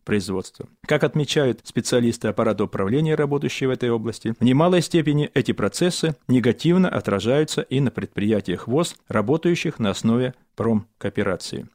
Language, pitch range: Russian, 110-150 Hz